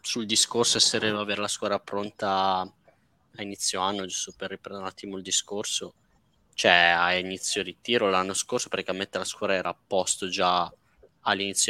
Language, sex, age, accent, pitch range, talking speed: Italian, male, 20-39, native, 95-115 Hz, 165 wpm